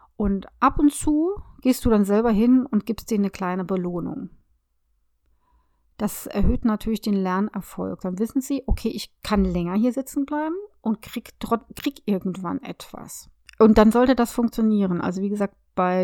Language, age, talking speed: German, 30-49, 165 wpm